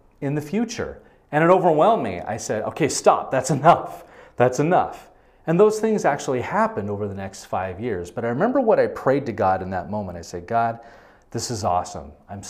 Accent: American